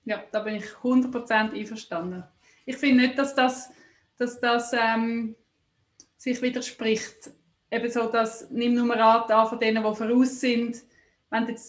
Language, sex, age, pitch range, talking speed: English, female, 20-39, 220-260 Hz, 160 wpm